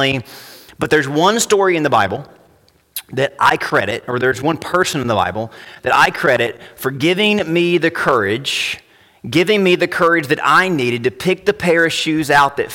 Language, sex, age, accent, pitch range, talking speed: English, male, 30-49, American, 140-210 Hz, 190 wpm